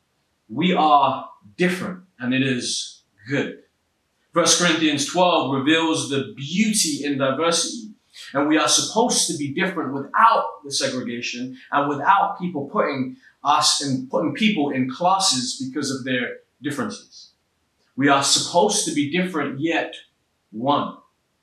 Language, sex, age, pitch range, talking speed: English, male, 30-49, 130-185 Hz, 130 wpm